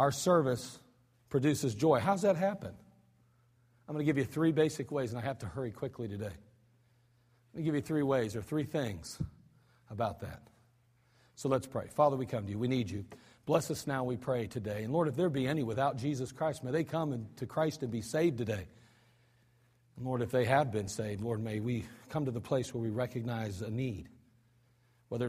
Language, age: English, 40-59